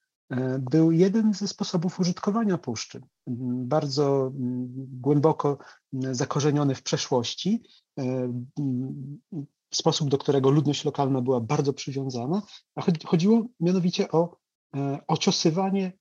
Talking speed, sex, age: 90 wpm, male, 40-59